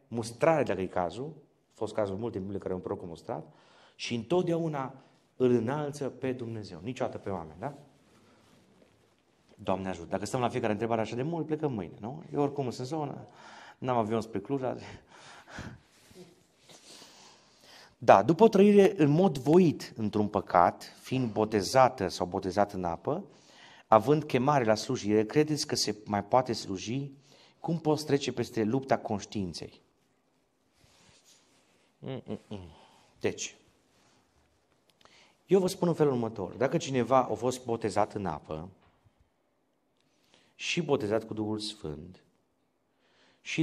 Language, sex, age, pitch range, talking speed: Romanian, male, 30-49, 105-145 Hz, 135 wpm